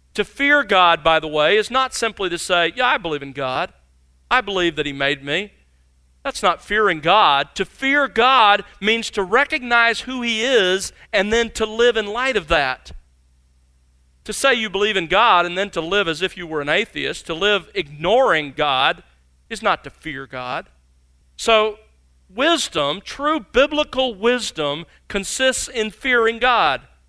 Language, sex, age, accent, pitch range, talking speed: English, male, 40-59, American, 150-220 Hz, 170 wpm